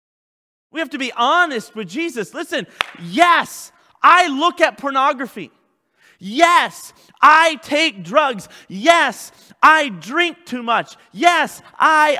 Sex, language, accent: male, English, American